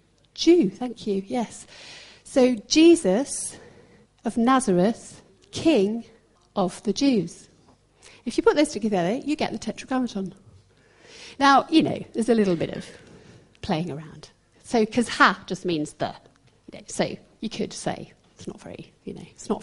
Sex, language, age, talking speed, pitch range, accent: female, English, 40-59, 145 wpm, 195-250 Hz, British